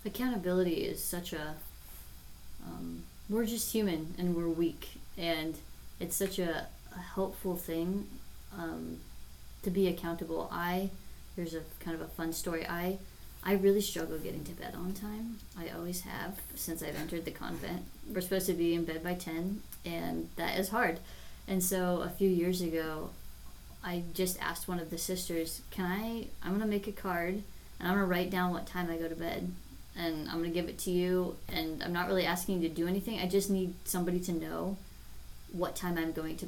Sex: female